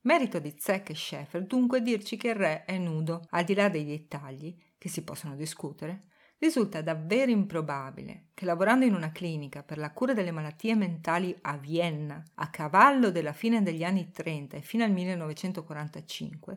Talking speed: 175 wpm